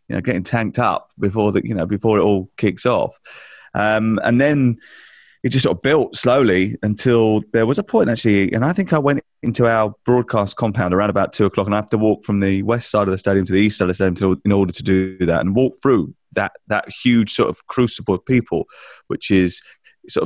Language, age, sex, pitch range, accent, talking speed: English, 30-49, male, 100-120 Hz, British, 240 wpm